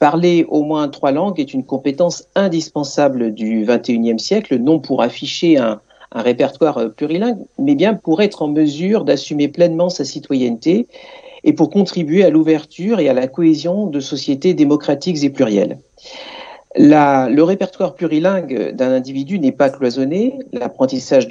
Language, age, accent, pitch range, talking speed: French, 50-69, French, 135-195 Hz, 145 wpm